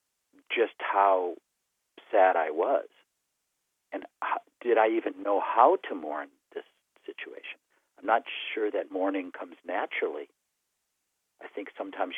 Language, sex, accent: English, male, American